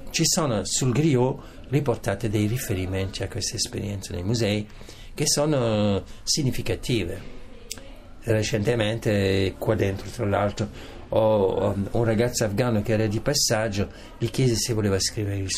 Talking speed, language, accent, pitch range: 130 wpm, Italian, native, 95-115 Hz